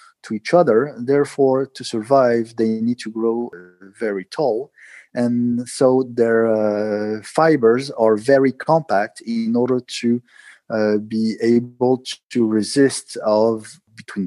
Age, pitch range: 40-59, 110-135 Hz